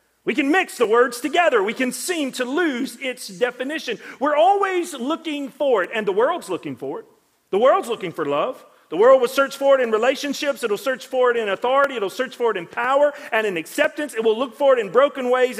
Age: 40-59